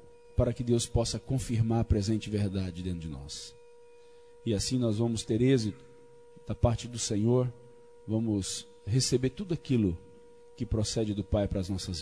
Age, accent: 40-59, Brazilian